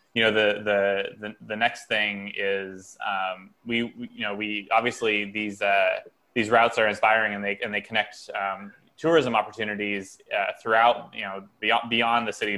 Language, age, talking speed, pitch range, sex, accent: English, 20-39, 180 wpm, 95-110 Hz, male, American